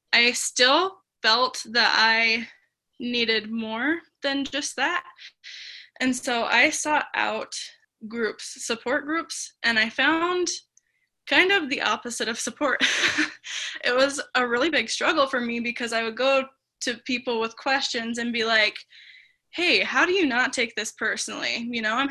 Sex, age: female, 10-29